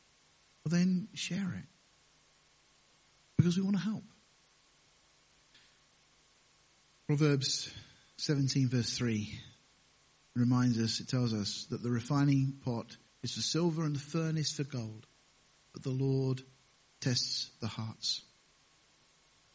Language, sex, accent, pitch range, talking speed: English, male, British, 120-140 Hz, 110 wpm